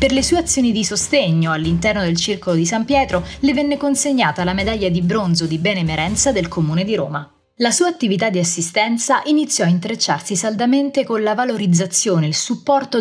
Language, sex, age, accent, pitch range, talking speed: Italian, female, 20-39, native, 170-235 Hz, 185 wpm